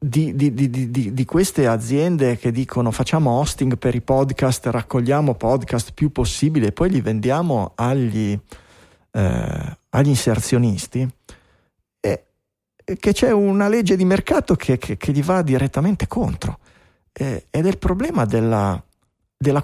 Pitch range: 115-150 Hz